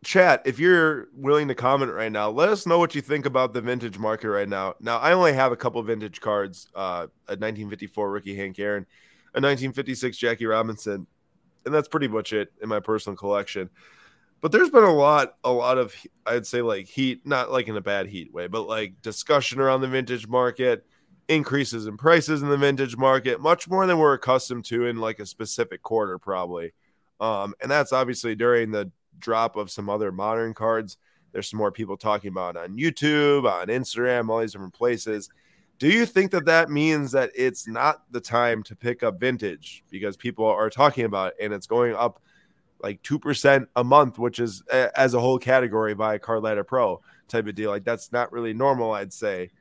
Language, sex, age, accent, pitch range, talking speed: English, male, 20-39, American, 105-140 Hz, 205 wpm